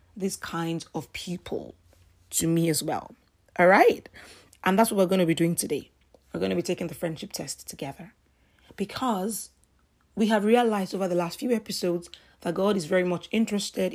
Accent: Nigerian